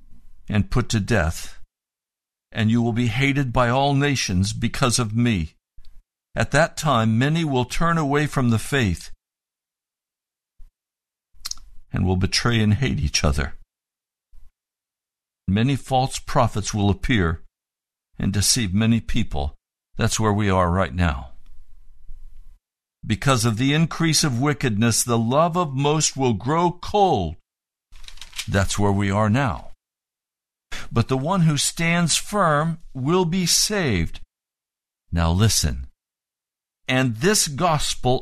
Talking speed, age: 125 wpm, 60-79